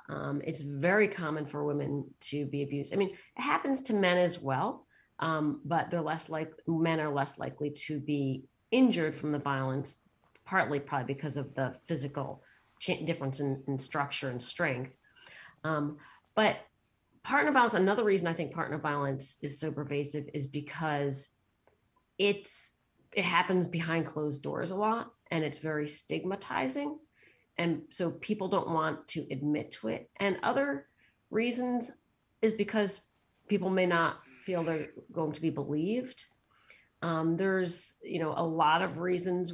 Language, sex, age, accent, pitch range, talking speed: English, female, 40-59, American, 145-180 Hz, 155 wpm